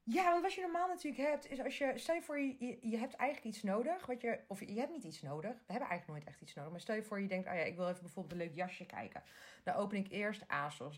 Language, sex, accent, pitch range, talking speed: Dutch, female, Dutch, 180-225 Hz, 290 wpm